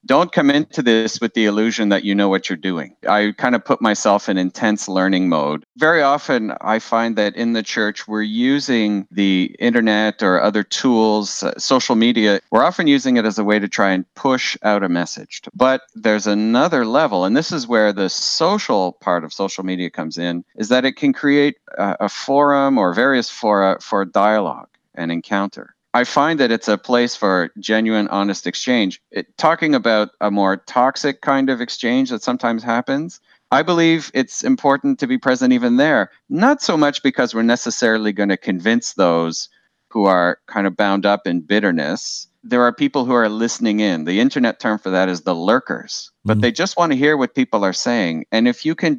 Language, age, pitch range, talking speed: English, 40-59, 100-130 Hz, 200 wpm